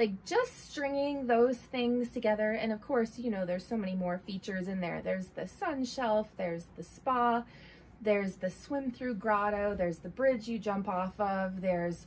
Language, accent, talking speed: English, American, 185 wpm